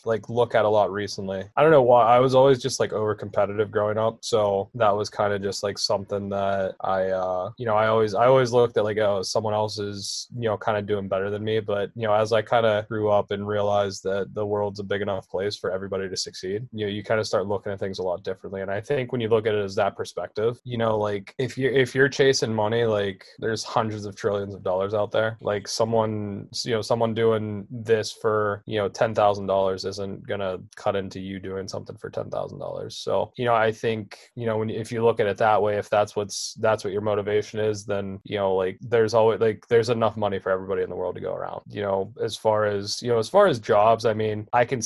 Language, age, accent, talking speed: English, 20-39, American, 260 wpm